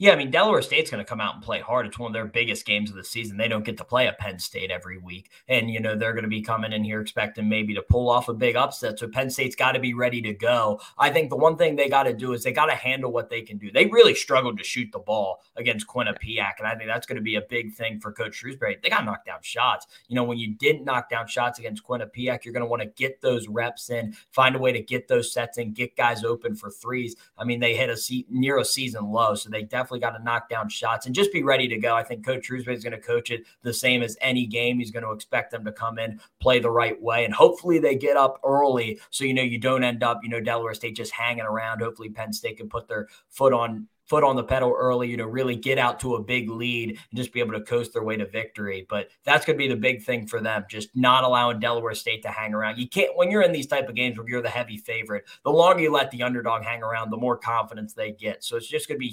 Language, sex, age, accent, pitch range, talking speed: English, male, 20-39, American, 115-130 Hz, 290 wpm